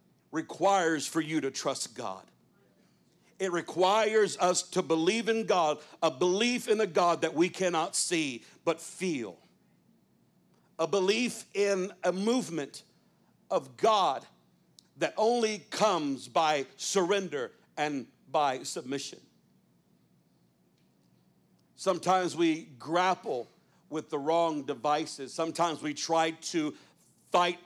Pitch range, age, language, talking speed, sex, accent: 150-190 Hz, 60-79, English, 110 wpm, male, American